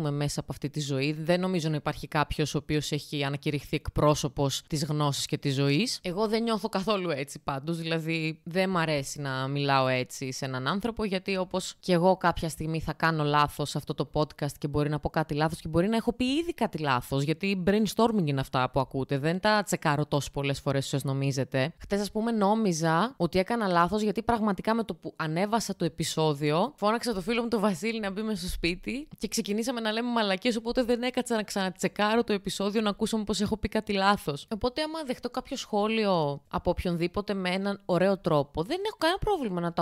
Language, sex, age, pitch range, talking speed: Greek, female, 20-39, 150-215 Hz, 210 wpm